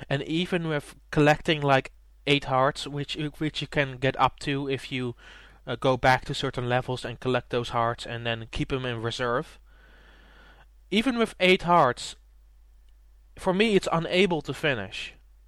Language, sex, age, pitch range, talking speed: English, male, 20-39, 120-150 Hz, 165 wpm